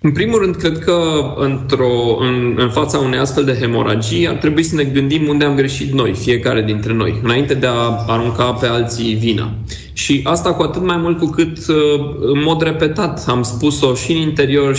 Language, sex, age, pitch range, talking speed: Romanian, male, 20-39, 120-150 Hz, 190 wpm